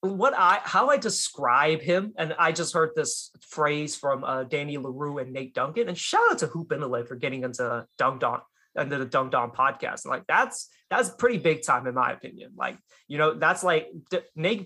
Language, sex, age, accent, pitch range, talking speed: English, male, 20-39, American, 150-200 Hz, 220 wpm